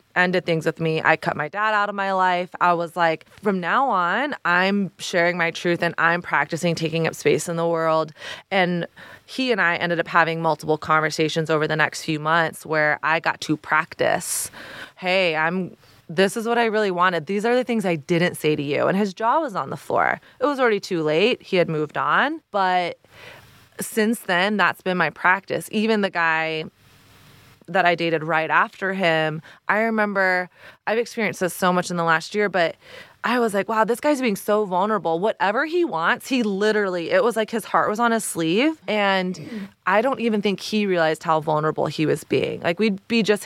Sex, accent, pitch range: female, American, 165-215 Hz